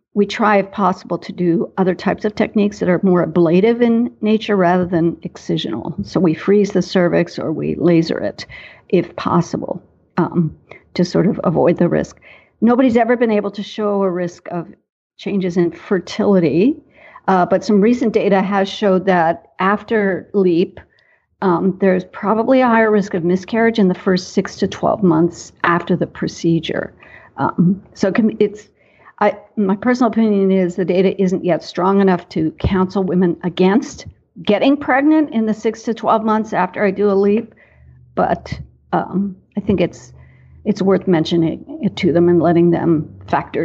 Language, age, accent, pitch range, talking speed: English, 50-69, American, 175-210 Hz, 170 wpm